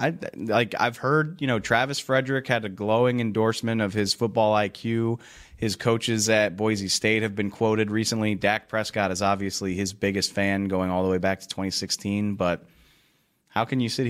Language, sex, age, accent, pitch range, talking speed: English, male, 20-39, American, 95-110 Hz, 185 wpm